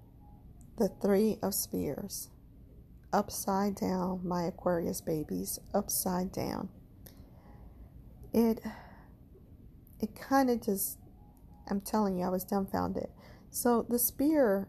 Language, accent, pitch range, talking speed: English, American, 175-205 Hz, 100 wpm